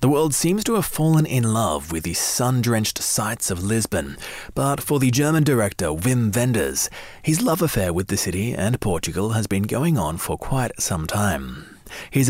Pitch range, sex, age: 105-145 Hz, male, 30-49